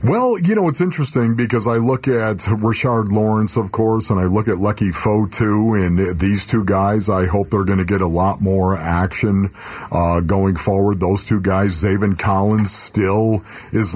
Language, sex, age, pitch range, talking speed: English, male, 50-69, 100-115 Hz, 190 wpm